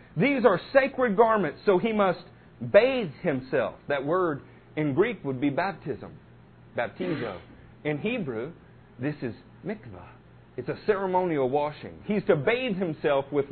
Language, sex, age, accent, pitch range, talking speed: English, male, 40-59, American, 130-210 Hz, 140 wpm